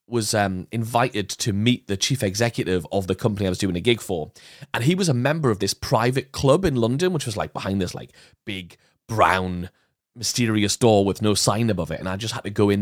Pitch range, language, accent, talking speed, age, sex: 105-160 Hz, English, British, 235 wpm, 30-49, male